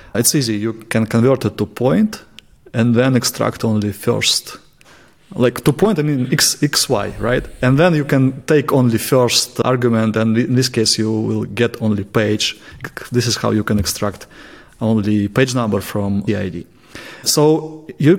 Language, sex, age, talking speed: English, male, 30-49, 175 wpm